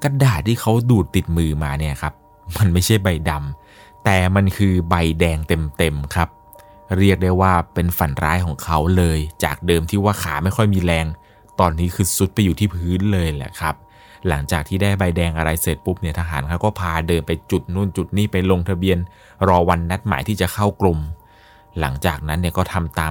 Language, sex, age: Thai, male, 20-39